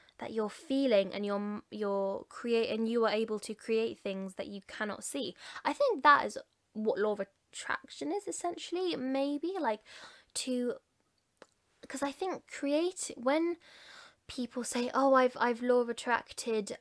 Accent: British